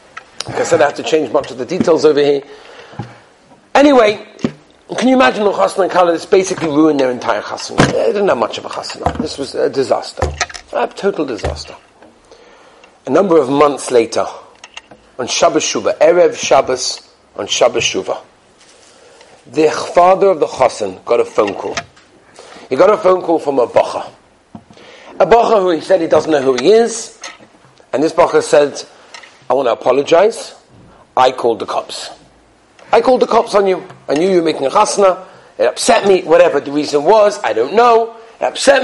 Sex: male